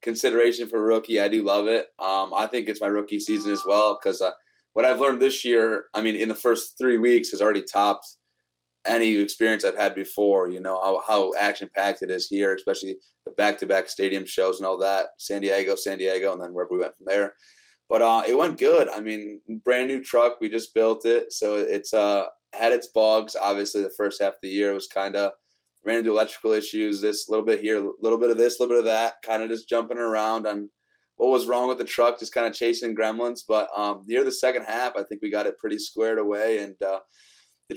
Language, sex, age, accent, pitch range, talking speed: English, male, 20-39, American, 105-120 Hz, 230 wpm